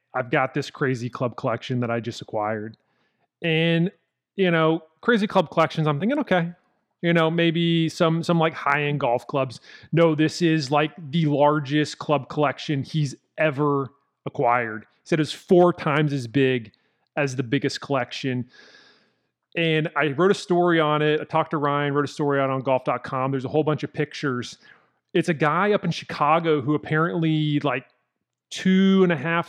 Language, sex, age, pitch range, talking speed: English, male, 30-49, 145-170 Hz, 175 wpm